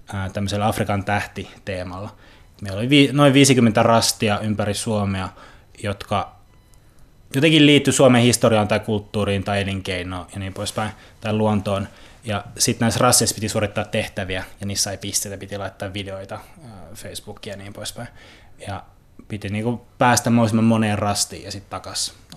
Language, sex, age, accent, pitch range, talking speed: Finnish, male, 20-39, native, 100-115 Hz, 140 wpm